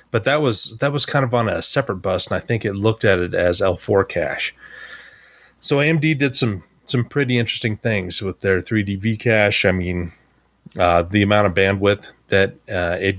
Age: 30-49